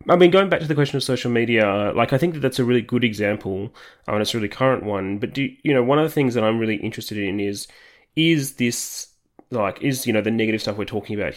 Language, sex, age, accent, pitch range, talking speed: English, male, 20-39, Australian, 105-130 Hz, 270 wpm